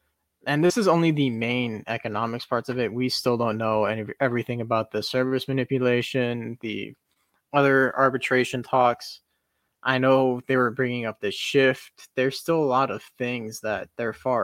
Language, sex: English, male